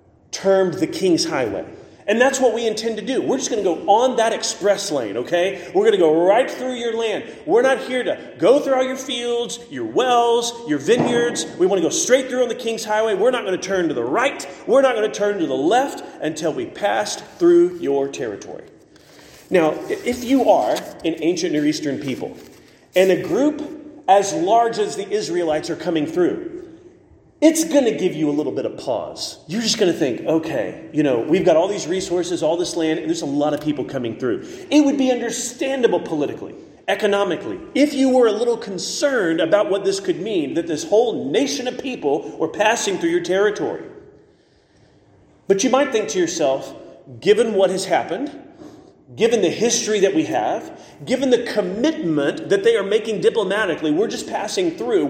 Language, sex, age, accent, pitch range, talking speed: English, male, 40-59, American, 205-335 Hz, 200 wpm